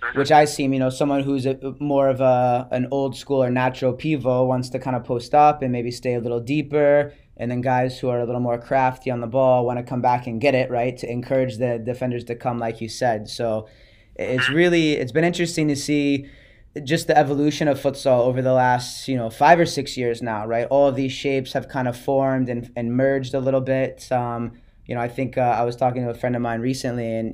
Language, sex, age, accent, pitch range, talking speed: English, male, 20-39, American, 120-140 Hz, 245 wpm